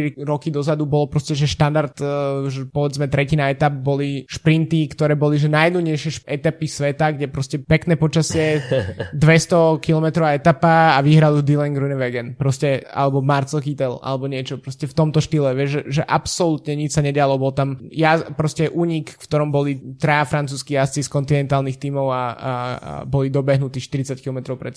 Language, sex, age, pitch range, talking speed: Slovak, male, 20-39, 140-155 Hz, 170 wpm